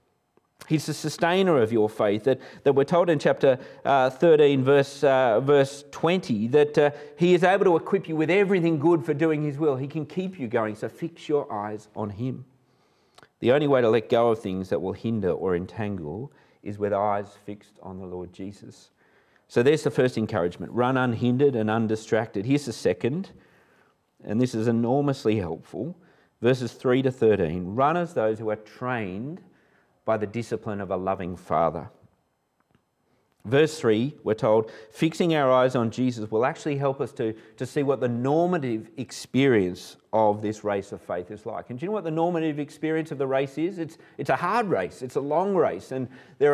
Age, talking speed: 40-59, 190 wpm